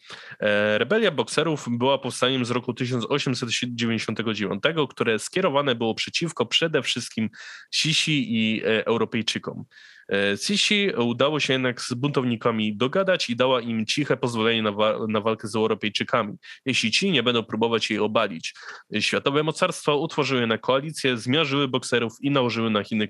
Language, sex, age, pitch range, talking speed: Polish, male, 20-39, 115-145 Hz, 135 wpm